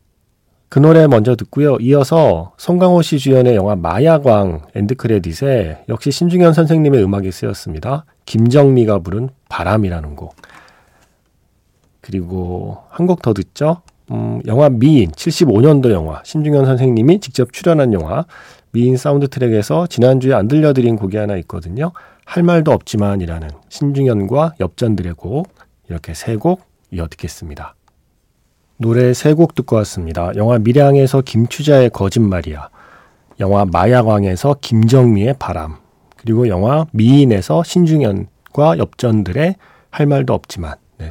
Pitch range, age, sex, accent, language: 100-145 Hz, 40-59, male, native, Korean